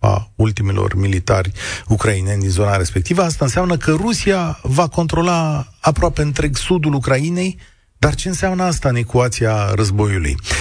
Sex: male